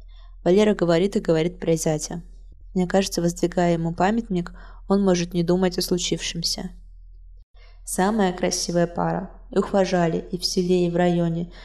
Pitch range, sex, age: 170-200 Hz, female, 20-39